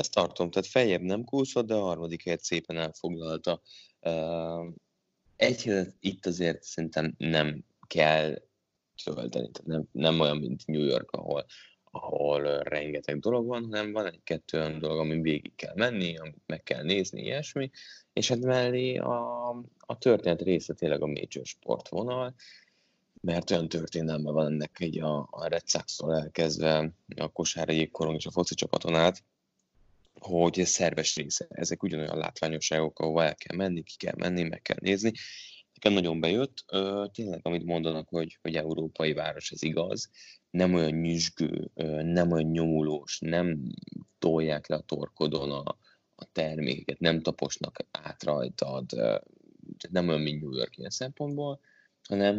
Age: 20-39